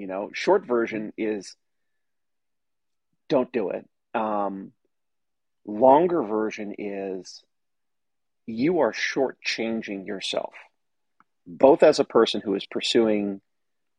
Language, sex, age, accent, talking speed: English, male, 40-59, American, 100 wpm